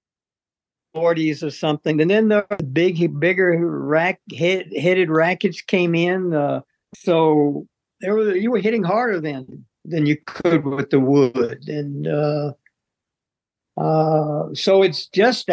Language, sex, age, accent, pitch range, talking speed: English, male, 60-79, American, 150-195 Hz, 135 wpm